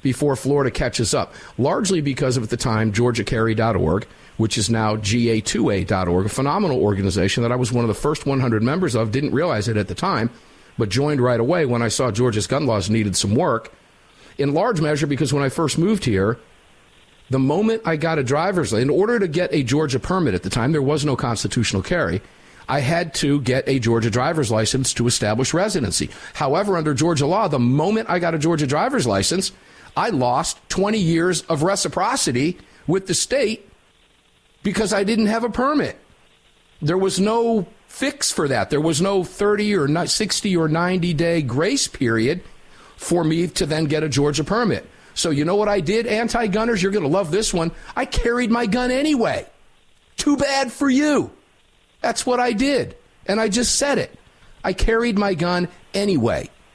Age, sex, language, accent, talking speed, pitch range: 50-69, male, English, American, 185 wpm, 125-200 Hz